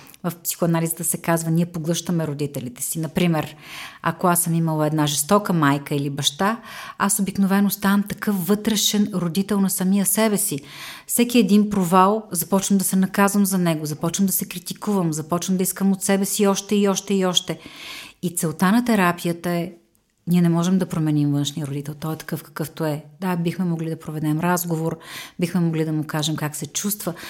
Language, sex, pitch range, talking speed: Bulgarian, female, 160-195 Hz, 180 wpm